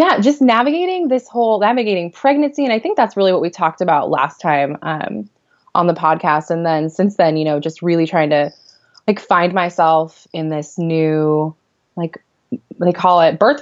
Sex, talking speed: female, 190 wpm